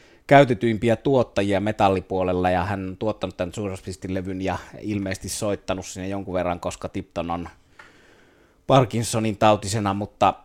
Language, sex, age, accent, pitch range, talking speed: Finnish, male, 30-49, native, 90-105 Hz, 130 wpm